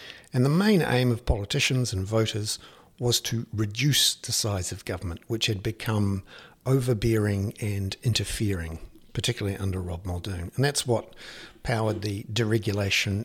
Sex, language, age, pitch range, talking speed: male, English, 60-79, 100-125 Hz, 140 wpm